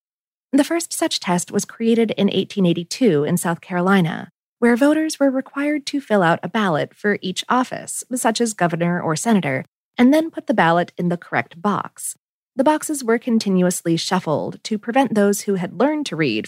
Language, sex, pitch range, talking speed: English, female, 175-250 Hz, 180 wpm